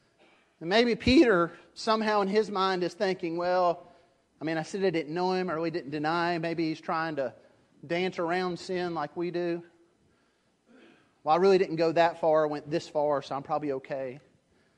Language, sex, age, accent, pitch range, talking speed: English, male, 30-49, American, 175-235 Hz, 195 wpm